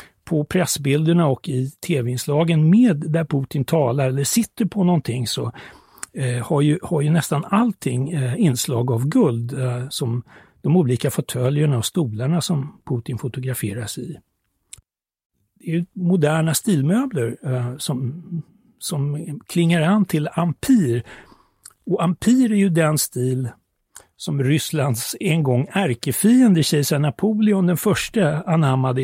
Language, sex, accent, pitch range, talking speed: Swedish, male, native, 130-180 Hz, 130 wpm